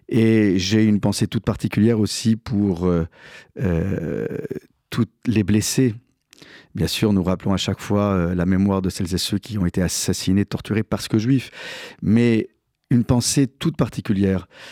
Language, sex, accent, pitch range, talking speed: French, male, French, 95-115 Hz, 165 wpm